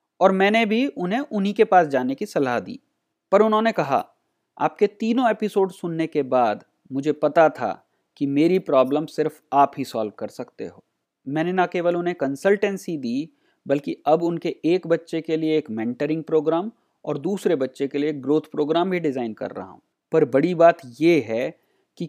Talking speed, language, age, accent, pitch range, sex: 185 wpm, Hindi, 30-49, native, 150-195 Hz, male